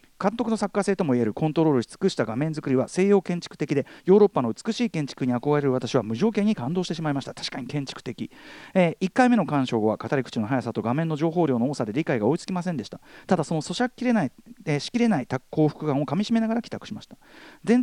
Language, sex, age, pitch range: Japanese, male, 40-59, 130-200 Hz